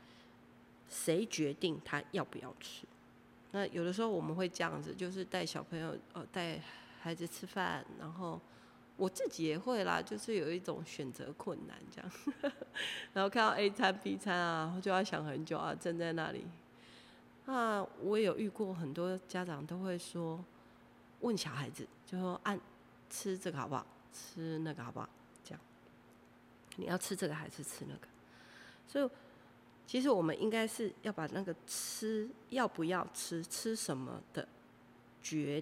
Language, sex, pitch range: Chinese, female, 155-195 Hz